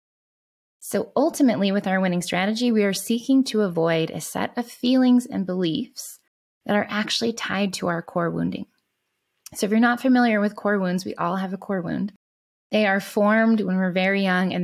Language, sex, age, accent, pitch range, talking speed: English, female, 20-39, American, 180-225 Hz, 195 wpm